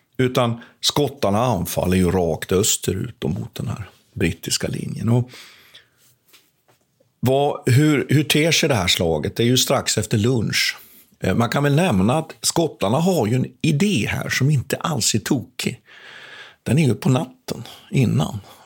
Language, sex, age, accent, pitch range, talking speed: Swedish, male, 50-69, native, 100-130 Hz, 155 wpm